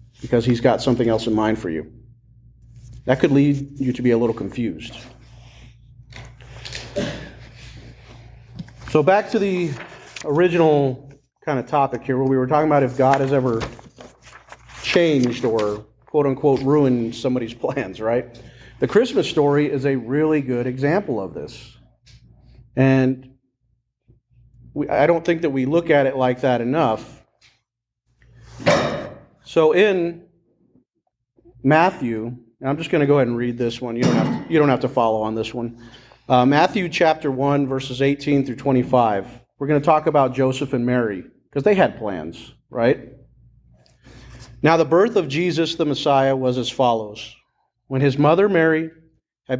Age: 40-59